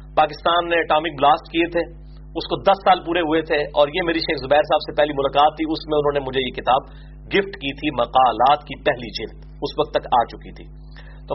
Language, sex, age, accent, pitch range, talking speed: English, male, 40-59, Indian, 150-190 Hz, 215 wpm